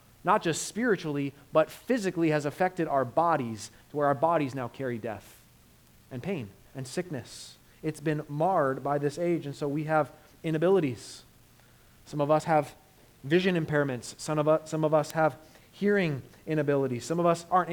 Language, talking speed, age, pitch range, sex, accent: English, 165 wpm, 30-49, 140-200 Hz, male, American